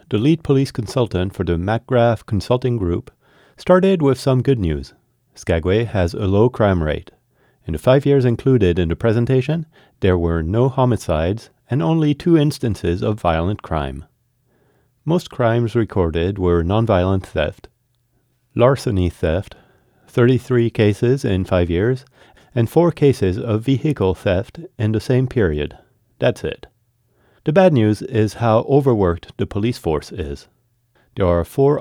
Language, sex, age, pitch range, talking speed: English, male, 40-59, 95-130 Hz, 145 wpm